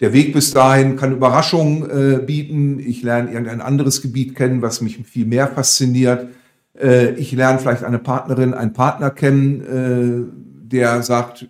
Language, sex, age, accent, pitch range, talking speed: German, male, 50-69, German, 120-140 Hz, 160 wpm